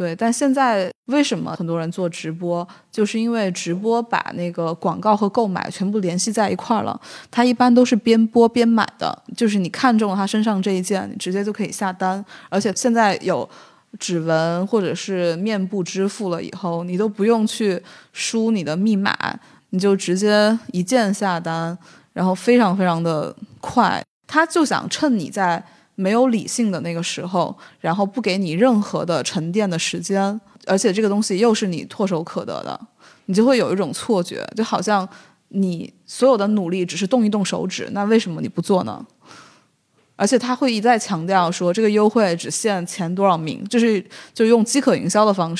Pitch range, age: 180-225 Hz, 20-39